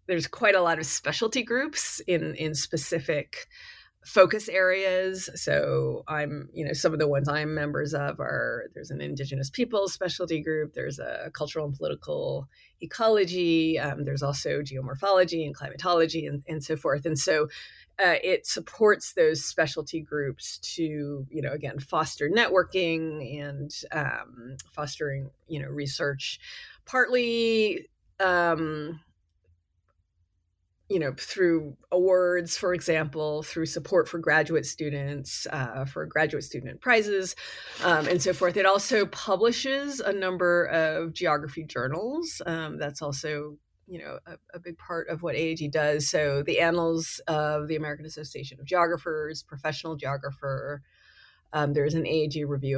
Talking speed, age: 140 wpm, 30-49